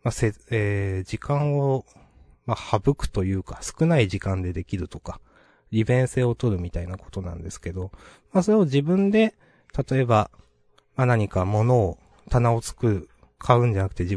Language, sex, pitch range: Japanese, male, 95-140 Hz